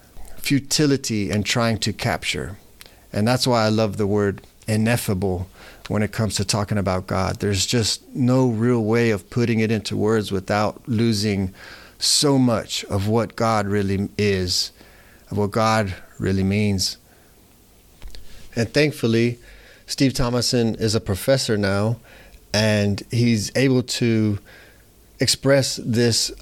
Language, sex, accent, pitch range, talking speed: English, male, American, 100-125 Hz, 130 wpm